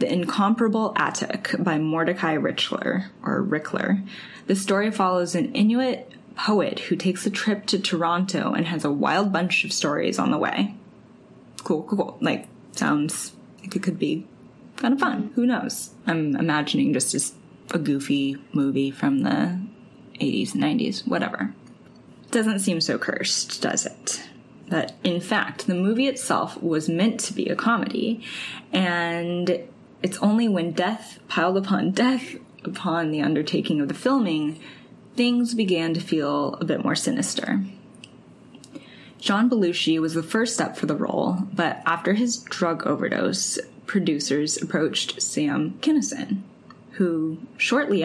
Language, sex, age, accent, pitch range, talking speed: English, female, 10-29, American, 170-230 Hz, 145 wpm